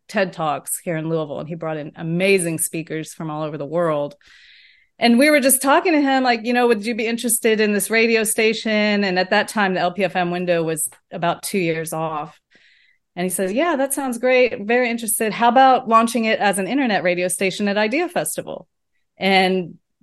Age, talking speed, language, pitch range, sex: 30-49, 205 wpm, English, 180-230 Hz, female